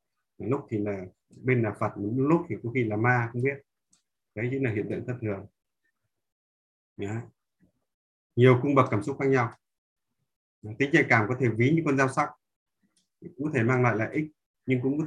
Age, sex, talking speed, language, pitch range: 20-39, male, 190 wpm, Vietnamese, 110-135 Hz